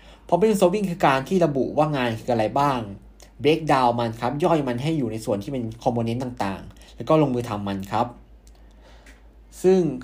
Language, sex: Thai, male